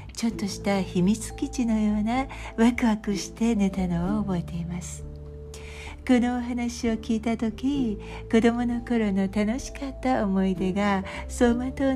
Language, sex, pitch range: Japanese, female, 175-250 Hz